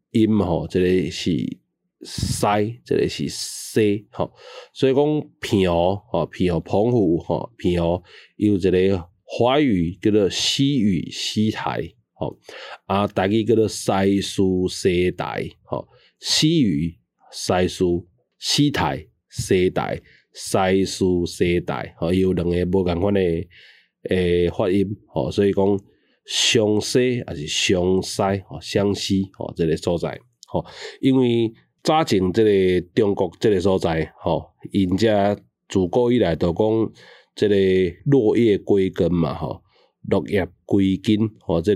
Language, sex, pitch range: Chinese, male, 90-110 Hz